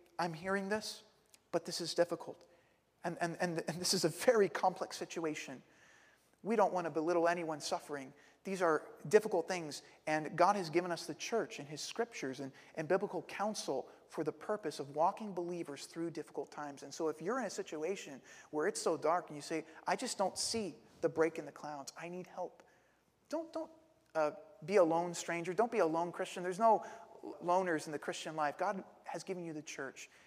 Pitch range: 160-215 Hz